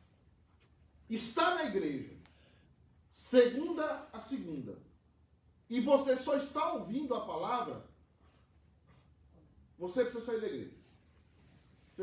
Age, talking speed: 40-59, 95 wpm